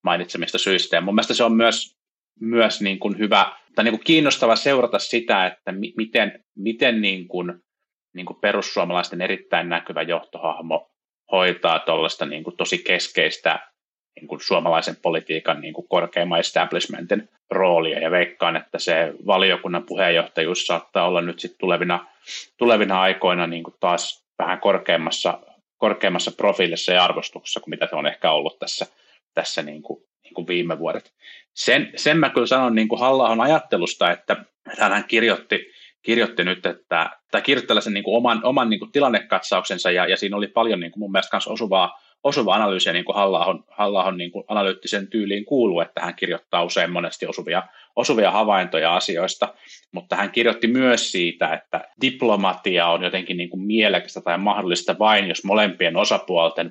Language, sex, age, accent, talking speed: Finnish, male, 30-49, native, 155 wpm